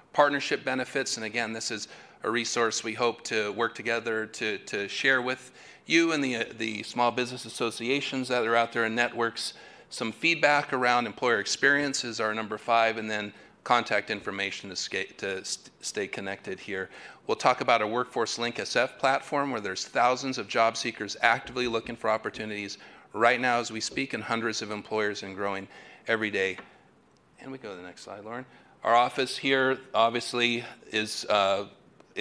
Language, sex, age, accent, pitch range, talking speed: English, male, 40-59, American, 105-120 Hz, 175 wpm